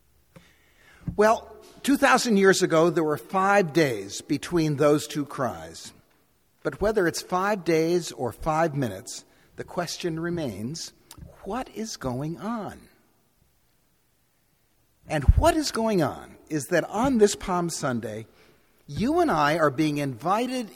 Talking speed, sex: 125 wpm, male